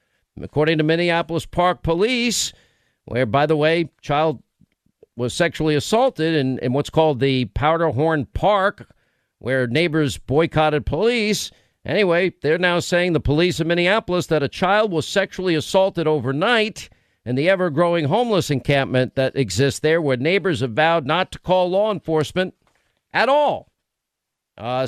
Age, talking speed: 50-69, 140 wpm